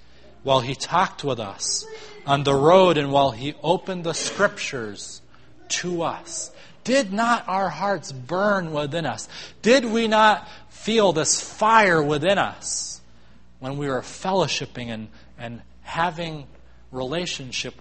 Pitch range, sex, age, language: 130-190 Hz, male, 30-49, English